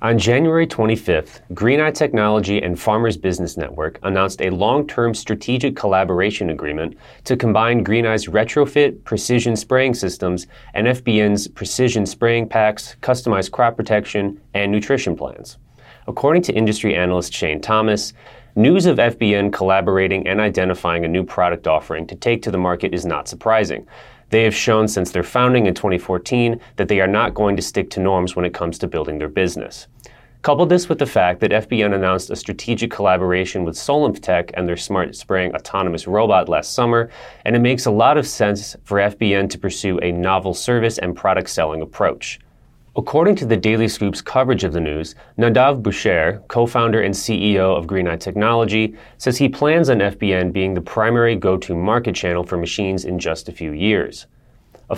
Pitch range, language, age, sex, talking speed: 90-115 Hz, English, 30-49, male, 170 wpm